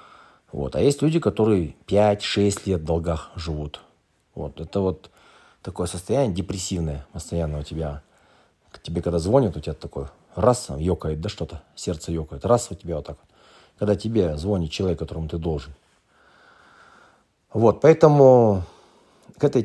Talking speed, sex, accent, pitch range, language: 135 wpm, male, native, 80-100 Hz, Russian